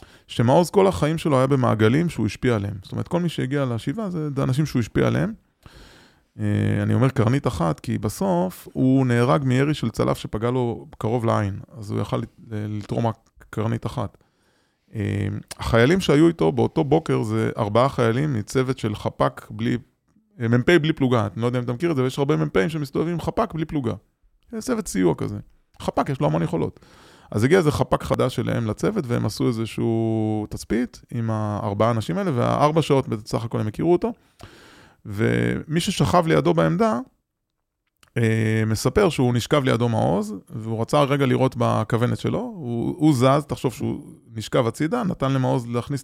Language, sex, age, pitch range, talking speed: Hebrew, male, 20-39, 110-150 Hz, 165 wpm